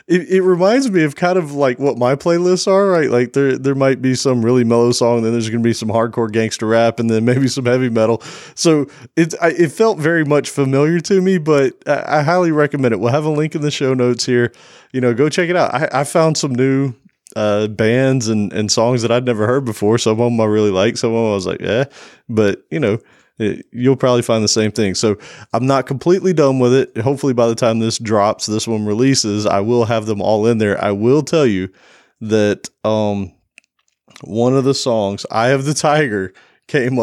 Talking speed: 230 wpm